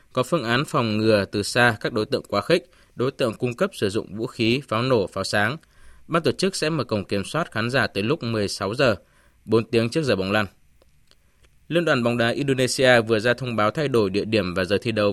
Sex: male